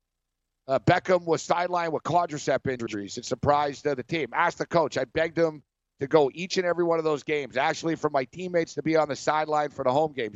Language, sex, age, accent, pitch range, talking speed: English, male, 50-69, American, 125-155 Hz, 230 wpm